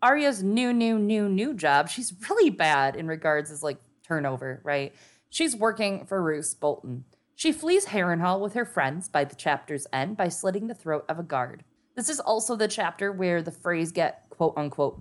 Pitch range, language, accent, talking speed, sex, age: 150-210 Hz, English, American, 190 wpm, female, 20-39